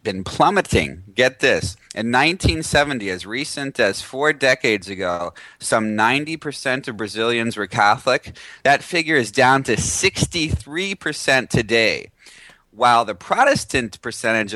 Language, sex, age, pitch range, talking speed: English, male, 30-49, 105-135 Hz, 130 wpm